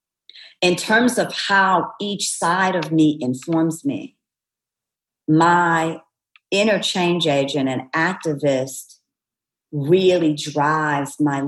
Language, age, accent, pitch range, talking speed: English, 50-69, American, 140-170 Hz, 100 wpm